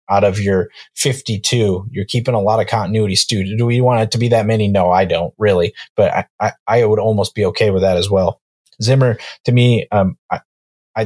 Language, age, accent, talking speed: English, 30-49, American, 215 wpm